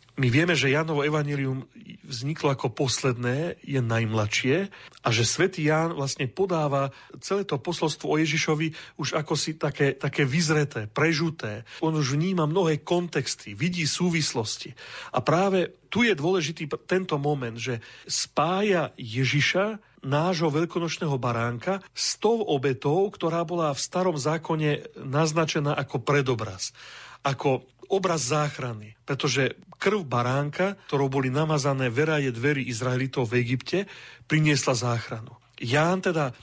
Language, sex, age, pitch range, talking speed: Slovak, male, 40-59, 135-170 Hz, 125 wpm